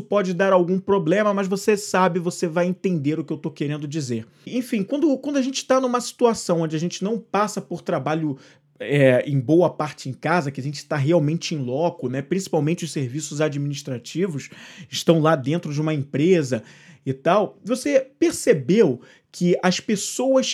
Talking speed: 180 wpm